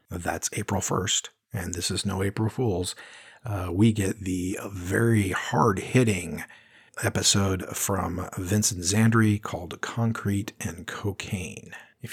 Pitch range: 95-110 Hz